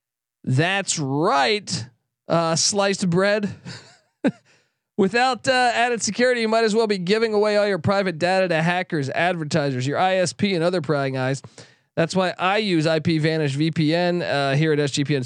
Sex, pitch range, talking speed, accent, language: male, 145-195 Hz, 155 wpm, American, English